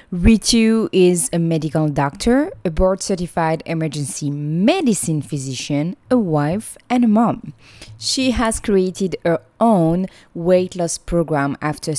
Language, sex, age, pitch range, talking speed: English, female, 20-39, 150-195 Hz, 120 wpm